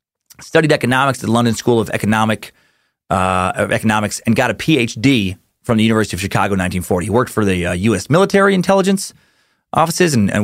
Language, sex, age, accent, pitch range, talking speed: English, male, 30-49, American, 110-170 Hz, 190 wpm